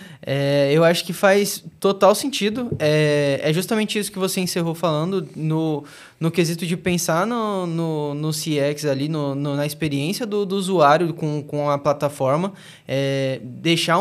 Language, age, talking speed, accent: Portuguese, 10-29, 140 wpm, Brazilian